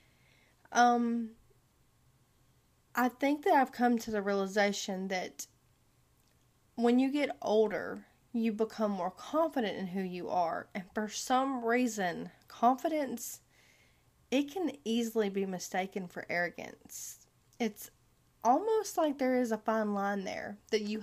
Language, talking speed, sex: English, 130 wpm, female